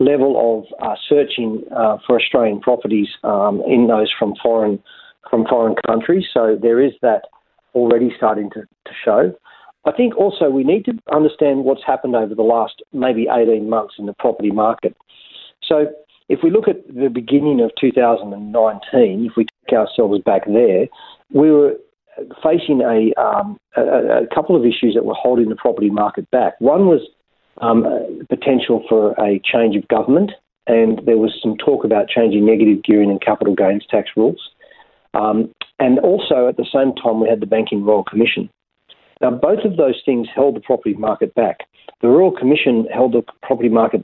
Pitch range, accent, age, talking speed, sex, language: 110-135 Hz, Australian, 40-59, 175 wpm, male, English